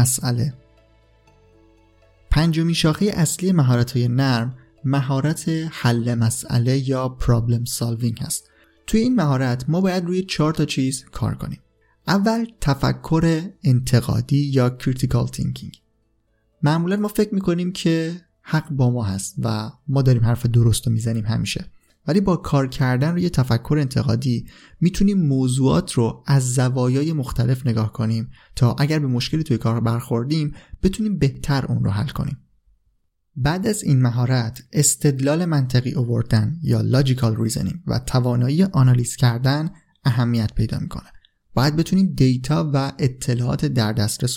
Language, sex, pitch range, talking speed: Persian, male, 120-155 Hz, 135 wpm